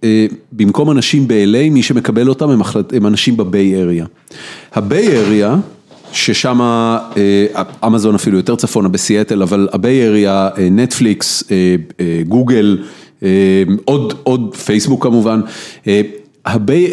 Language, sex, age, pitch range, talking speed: Hebrew, male, 40-59, 105-135 Hz, 105 wpm